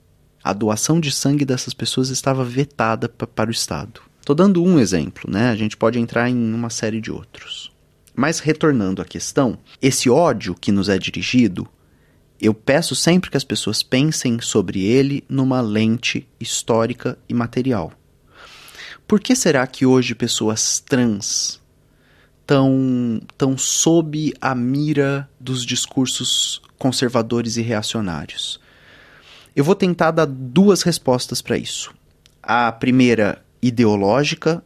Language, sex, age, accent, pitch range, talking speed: Portuguese, male, 30-49, Brazilian, 115-145 Hz, 135 wpm